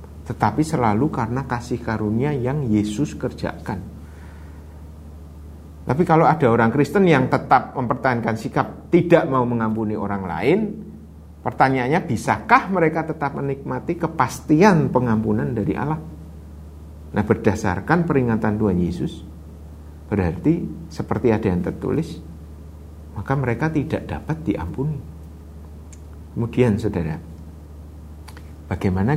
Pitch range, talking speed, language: 80-120 Hz, 100 wpm, Indonesian